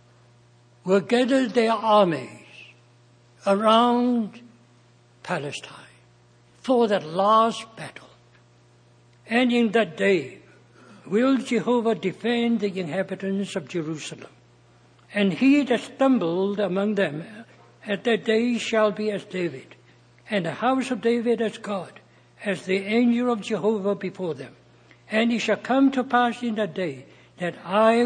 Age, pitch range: 60-79, 160-225 Hz